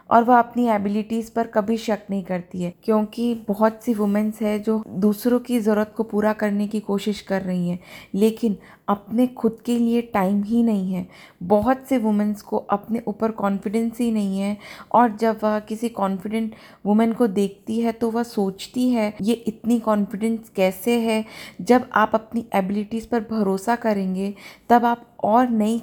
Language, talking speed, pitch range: Hindi, 175 wpm, 200-230 Hz